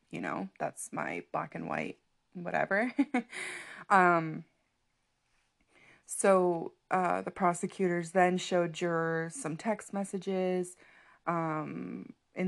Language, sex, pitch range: English, female, 165-185 Hz